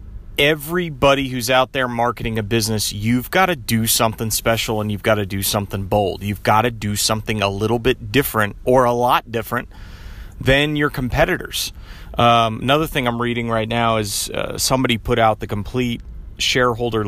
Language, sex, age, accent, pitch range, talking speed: English, male, 30-49, American, 105-130 Hz, 195 wpm